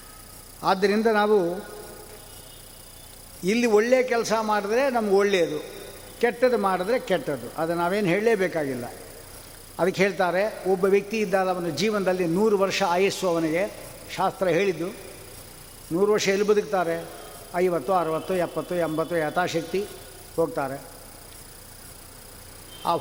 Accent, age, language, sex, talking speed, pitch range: native, 60-79, Kannada, male, 95 wpm, 165-220 Hz